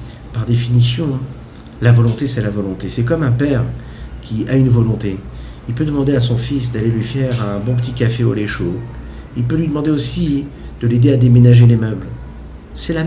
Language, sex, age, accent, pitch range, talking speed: French, male, 50-69, French, 100-125 Hz, 200 wpm